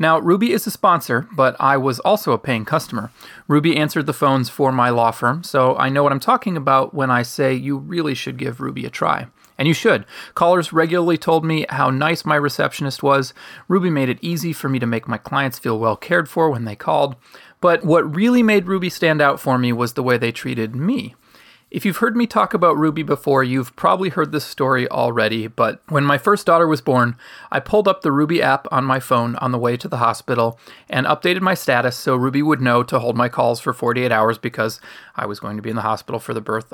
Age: 30-49